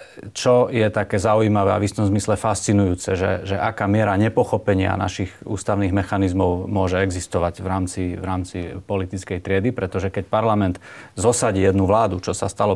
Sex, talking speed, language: male, 160 wpm, Slovak